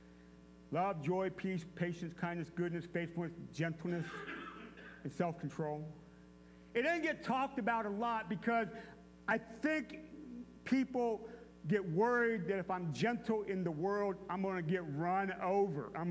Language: English